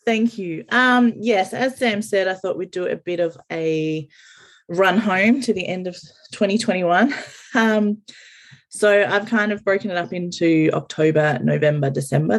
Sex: female